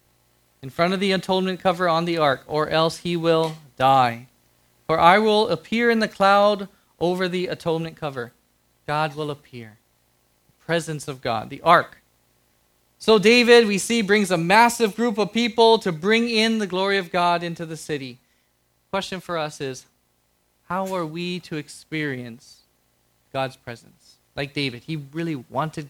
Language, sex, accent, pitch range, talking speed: English, male, American, 115-185 Hz, 165 wpm